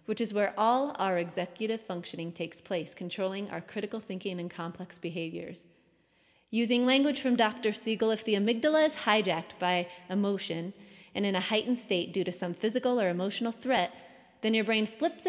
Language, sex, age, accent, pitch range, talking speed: English, female, 30-49, American, 180-235 Hz, 175 wpm